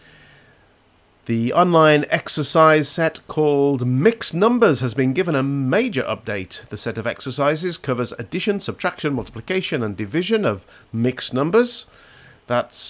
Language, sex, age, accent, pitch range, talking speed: English, male, 50-69, British, 115-155 Hz, 125 wpm